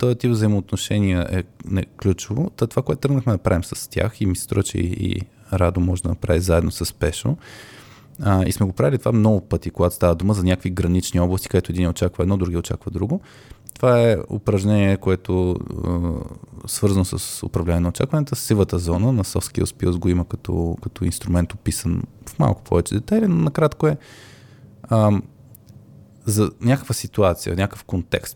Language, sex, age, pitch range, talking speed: Bulgarian, male, 20-39, 90-125 Hz, 165 wpm